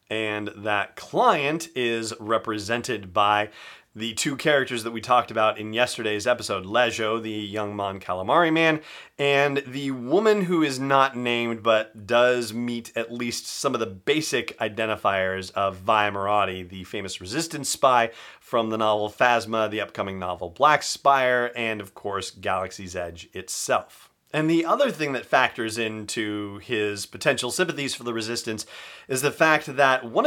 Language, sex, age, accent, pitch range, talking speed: English, male, 30-49, American, 110-145 Hz, 155 wpm